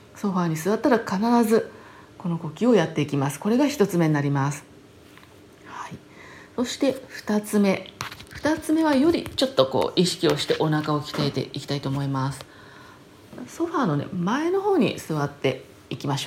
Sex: female